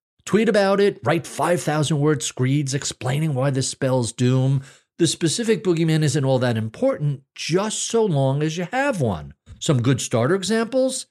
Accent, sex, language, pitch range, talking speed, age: American, male, English, 125-195 Hz, 155 wpm, 50-69